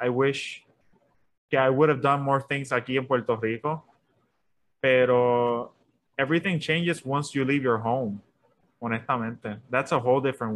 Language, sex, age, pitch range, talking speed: English, male, 20-39, 125-150 Hz, 150 wpm